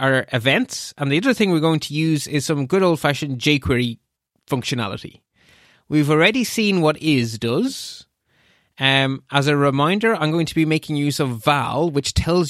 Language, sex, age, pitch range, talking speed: English, male, 20-39, 130-160 Hz, 175 wpm